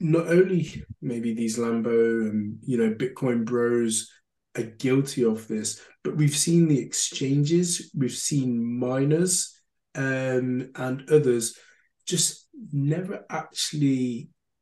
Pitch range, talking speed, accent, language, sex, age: 115-145 Hz, 115 wpm, British, English, male, 20-39